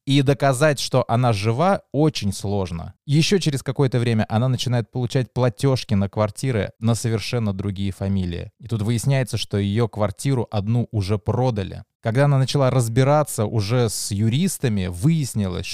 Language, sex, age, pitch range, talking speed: Russian, male, 20-39, 100-125 Hz, 145 wpm